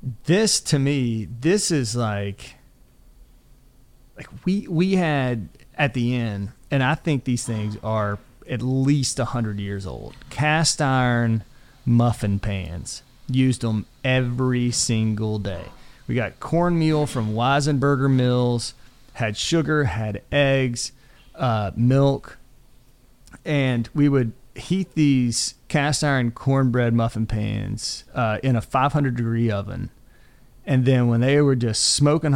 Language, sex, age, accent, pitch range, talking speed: English, male, 30-49, American, 115-145 Hz, 125 wpm